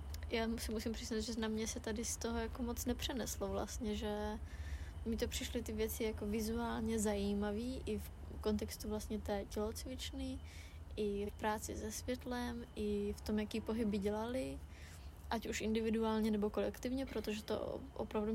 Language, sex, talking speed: Slovak, female, 160 wpm